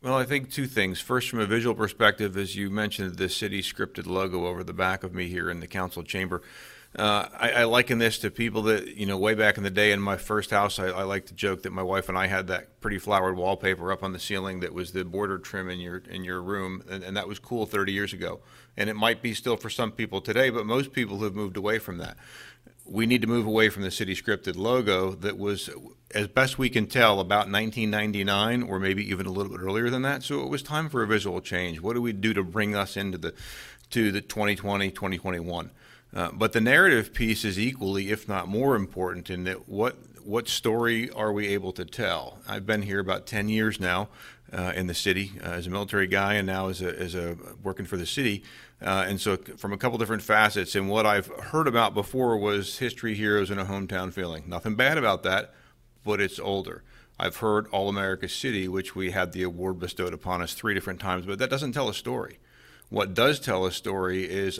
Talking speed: 230 wpm